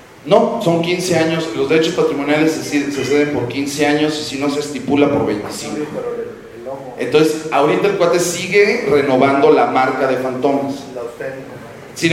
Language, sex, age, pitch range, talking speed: English, male, 40-59, 125-155 Hz, 150 wpm